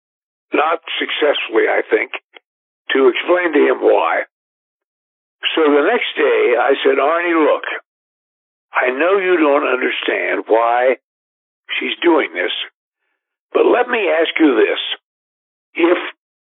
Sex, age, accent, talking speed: male, 60-79, American, 120 wpm